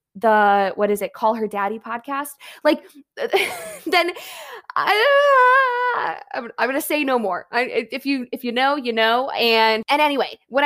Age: 20-39